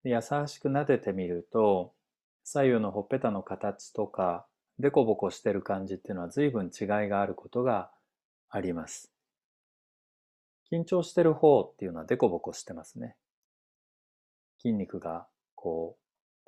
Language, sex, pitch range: Japanese, male, 95-145 Hz